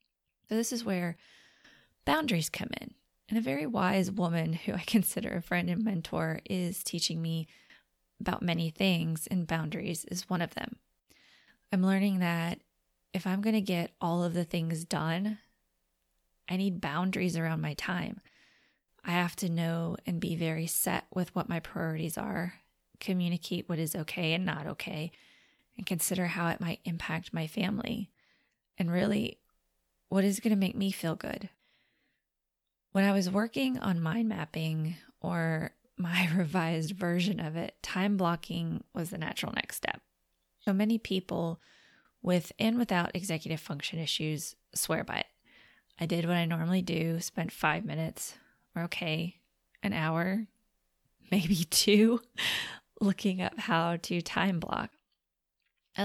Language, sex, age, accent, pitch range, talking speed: English, female, 20-39, American, 165-200 Hz, 150 wpm